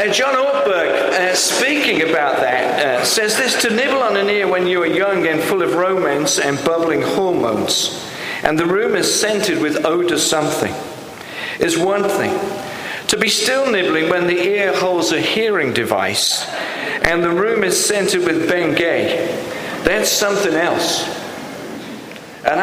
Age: 50-69